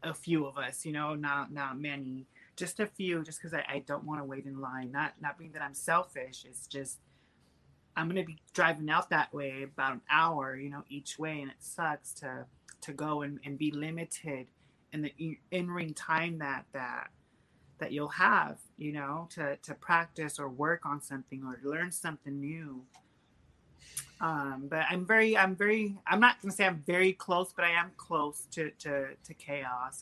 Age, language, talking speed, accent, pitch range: 30-49, English, 195 wpm, American, 140-175 Hz